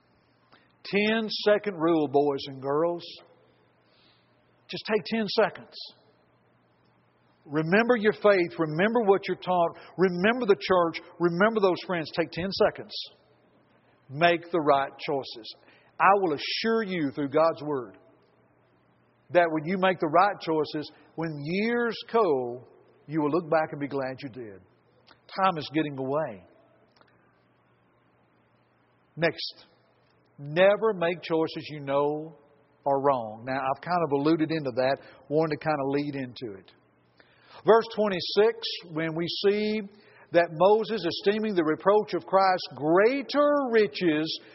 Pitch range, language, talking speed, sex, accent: 145-205 Hz, English, 130 wpm, male, American